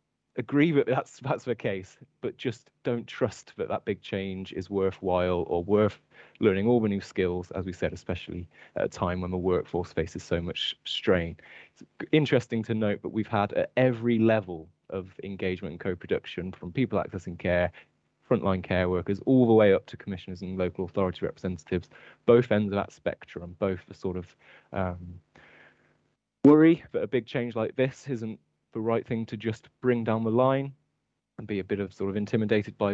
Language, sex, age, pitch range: English, male, 20-39, 90-110 Hz